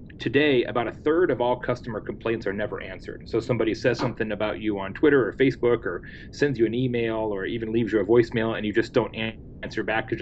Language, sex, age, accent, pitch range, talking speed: English, male, 30-49, American, 105-120 Hz, 230 wpm